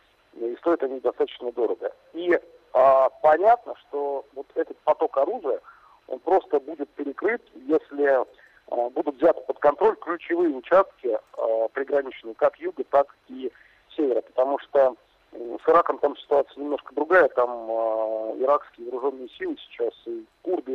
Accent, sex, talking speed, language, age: native, male, 125 wpm, Russian, 40-59